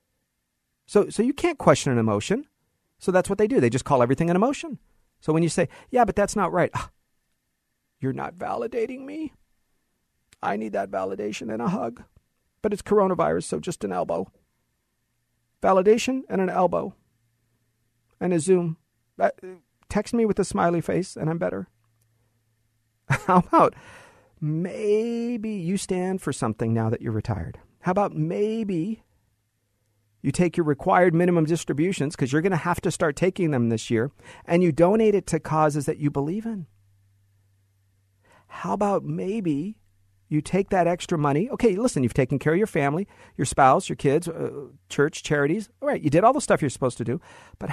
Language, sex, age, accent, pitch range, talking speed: English, male, 40-59, American, 115-185 Hz, 175 wpm